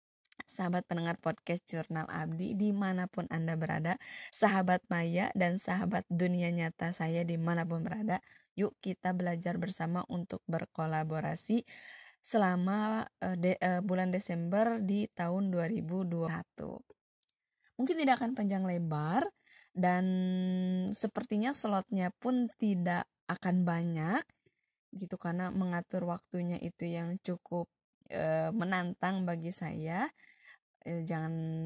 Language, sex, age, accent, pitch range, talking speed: Indonesian, female, 20-39, native, 170-215 Hz, 105 wpm